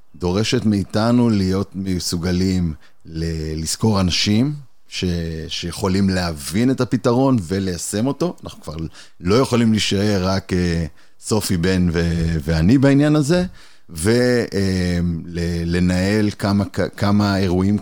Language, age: Hebrew, 30-49